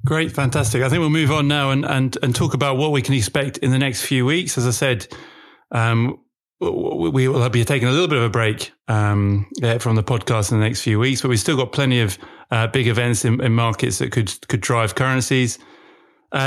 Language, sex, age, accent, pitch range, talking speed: English, male, 30-49, British, 115-135 Hz, 235 wpm